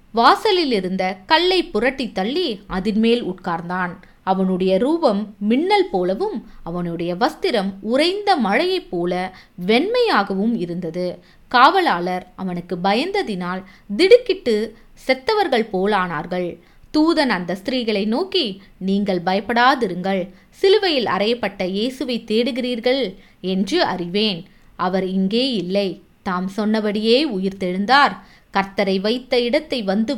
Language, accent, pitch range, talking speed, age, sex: Tamil, native, 185-250 Hz, 90 wpm, 20-39, female